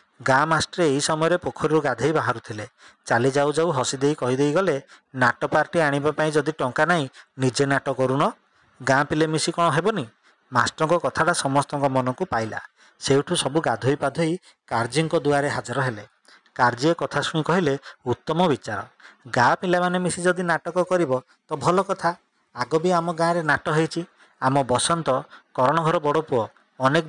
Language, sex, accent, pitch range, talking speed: English, male, Indian, 135-170 Hz, 90 wpm